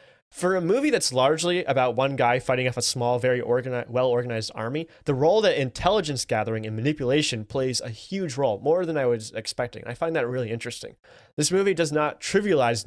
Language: English